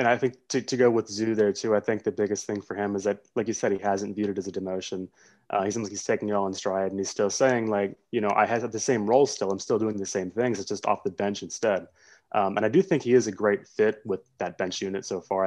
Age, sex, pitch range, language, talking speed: 20-39, male, 100-115 Hz, English, 310 wpm